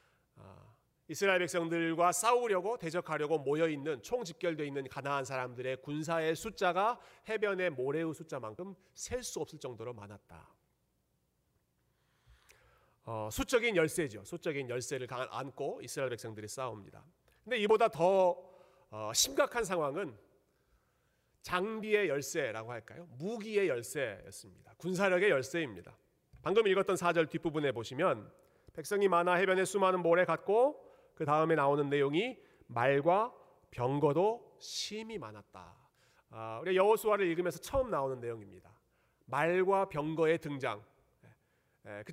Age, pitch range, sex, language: 40-59, 130-190 Hz, male, Korean